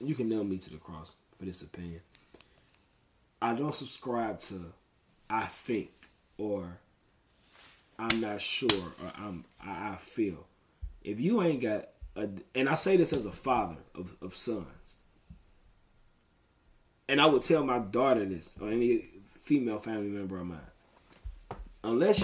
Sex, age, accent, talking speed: male, 20-39, American, 150 wpm